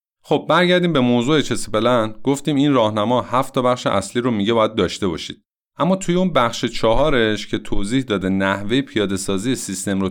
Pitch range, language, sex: 100-135 Hz, Persian, male